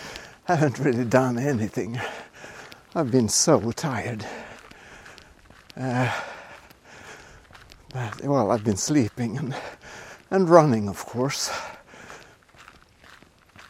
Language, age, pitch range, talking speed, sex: English, 60-79, 115-145 Hz, 90 wpm, male